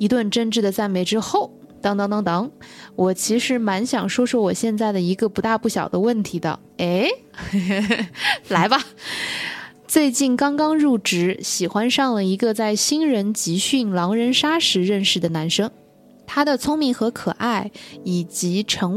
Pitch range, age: 190-250 Hz, 20-39